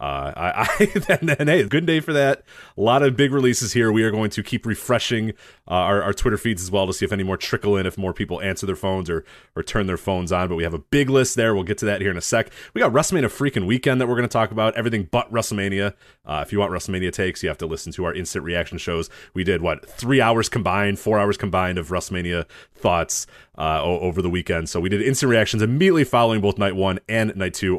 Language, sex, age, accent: English, male, 30-49, American